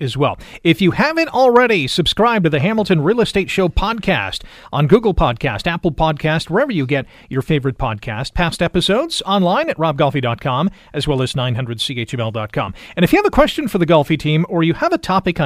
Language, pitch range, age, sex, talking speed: English, 140-190 Hz, 40-59, male, 190 wpm